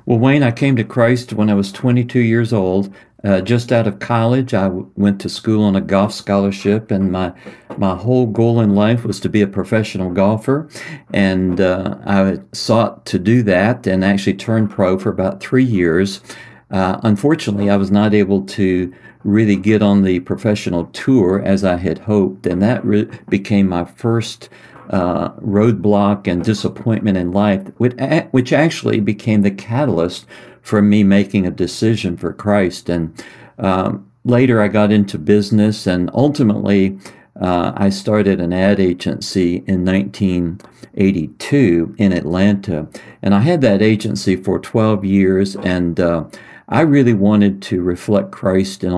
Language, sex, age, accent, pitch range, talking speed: English, male, 50-69, American, 95-110 Hz, 160 wpm